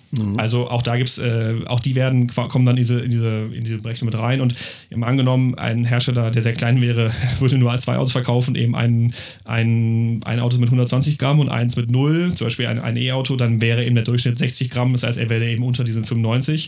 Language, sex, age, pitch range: German, male, 30-49, 120-135 Hz